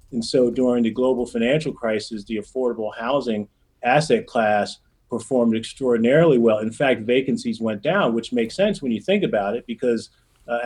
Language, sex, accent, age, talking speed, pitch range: English, male, American, 40-59, 170 wpm, 110-125 Hz